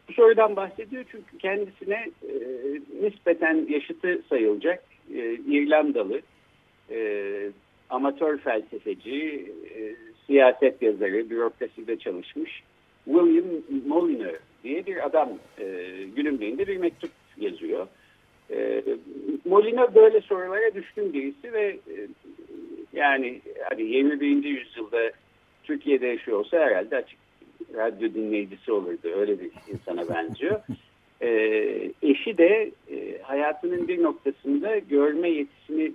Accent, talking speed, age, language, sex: native, 105 wpm, 60-79, Turkish, male